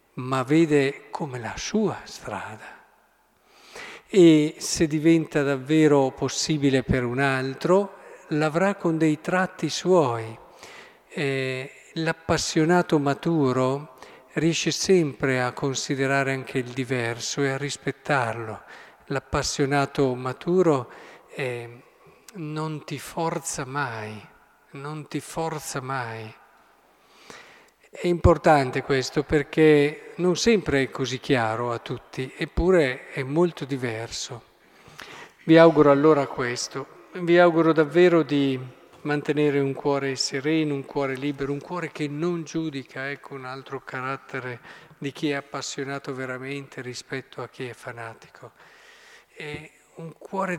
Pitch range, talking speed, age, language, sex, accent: 135-165 Hz, 115 wpm, 50-69, Italian, male, native